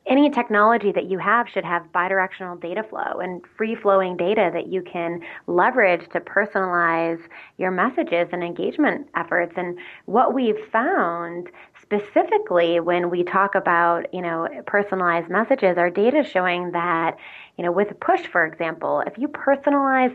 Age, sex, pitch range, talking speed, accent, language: 20-39, female, 175-220 Hz, 150 wpm, American, English